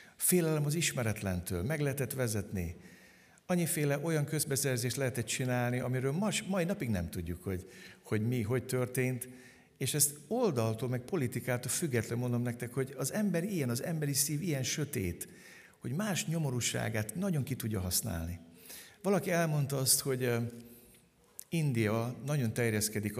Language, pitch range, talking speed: Hungarian, 100-140 Hz, 135 wpm